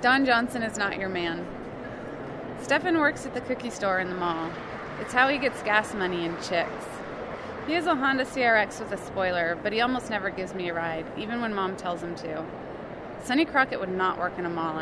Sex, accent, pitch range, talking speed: female, American, 180-240 Hz, 215 wpm